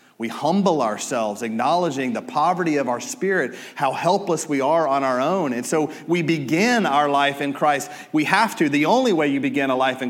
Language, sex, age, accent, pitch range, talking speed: English, male, 40-59, American, 140-190 Hz, 210 wpm